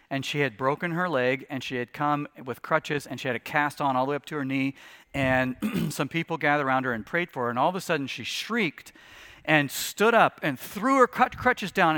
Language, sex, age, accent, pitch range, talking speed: English, male, 40-59, American, 135-195 Hz, 250 wpm